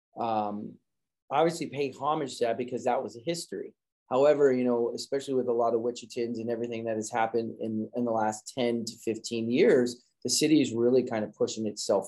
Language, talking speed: English, 205 wpm